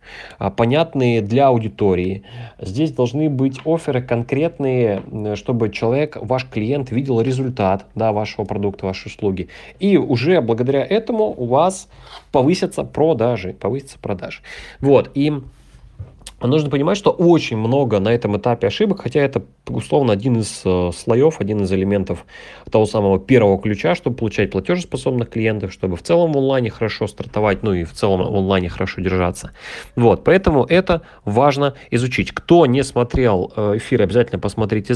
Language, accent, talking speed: Russian, native, 140 wpm